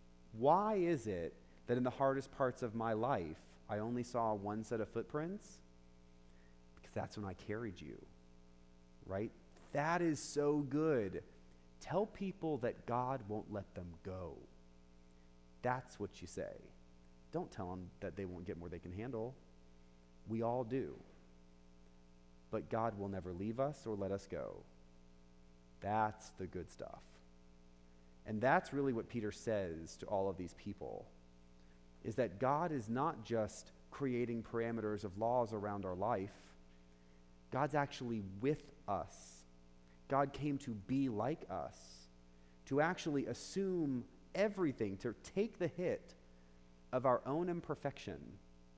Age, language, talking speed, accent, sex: 30-49, English, 140 wpm, American, male